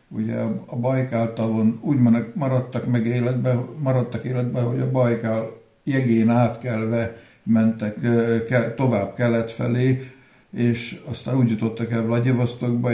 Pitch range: 115-130 Hz